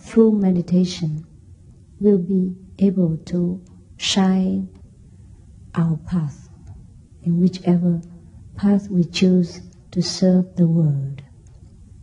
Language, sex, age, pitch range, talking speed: English, female, 50-69, 135-180 Hz, 90 wpm